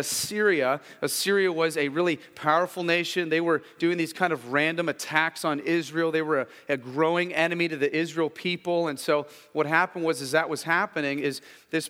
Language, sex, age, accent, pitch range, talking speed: English, male, 30-49, American, 160-180 Hz, 190 wpm